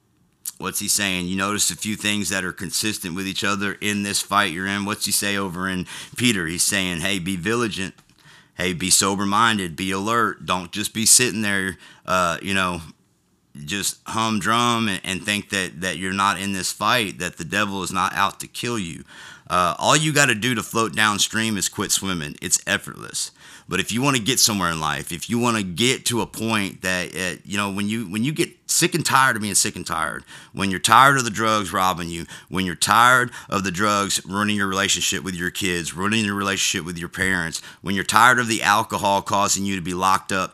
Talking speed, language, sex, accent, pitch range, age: 220 wpm, English, male, American, 95-110 Hz, 30-49